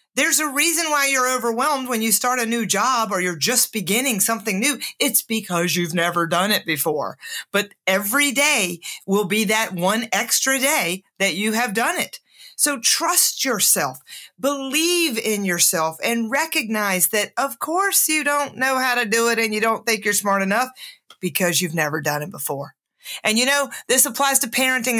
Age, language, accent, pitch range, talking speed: 40-59, English, American, 185-260 Hz, 185 wpm